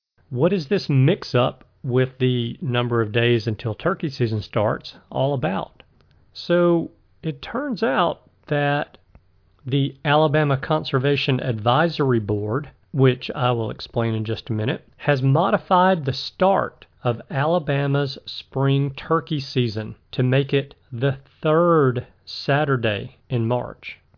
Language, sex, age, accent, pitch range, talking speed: English, male, 40-59, American, 120-160 Hz, 125 wpm